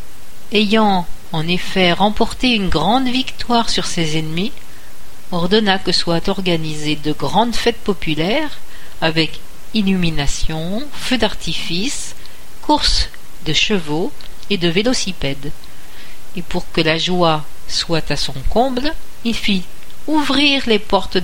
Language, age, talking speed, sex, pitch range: French, 50-69, 120 wpm, female, 170-235 Hz